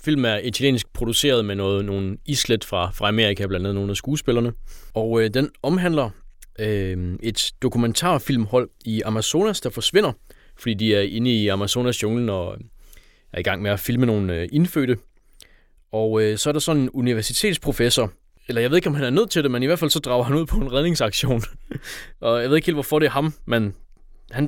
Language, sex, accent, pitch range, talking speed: Danish, male, native, 100-130 Hz, 205 wpm